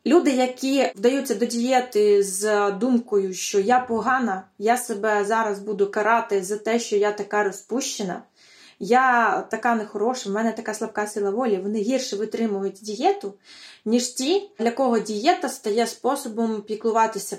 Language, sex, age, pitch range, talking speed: Ukrainian, female, 20-39, 205-250 Hz, 145 wpm